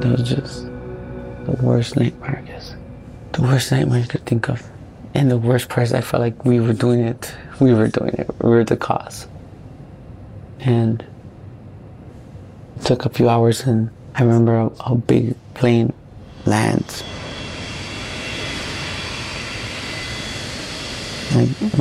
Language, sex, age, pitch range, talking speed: English, male, 30-49, 115-125 Hz, 135 wpm